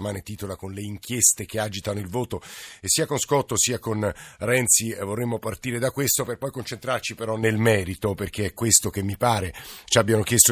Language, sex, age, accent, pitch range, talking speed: Italian, male, 50-69, native, 100-120 Hz, 200 wpm